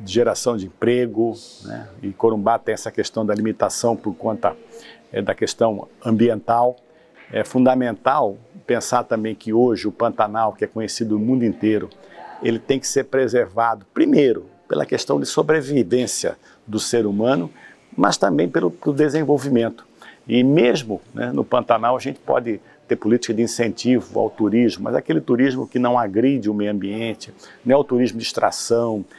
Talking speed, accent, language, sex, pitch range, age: 160 wpm, Brazilian, Portuguese, male, 110-130 Hz, 50-69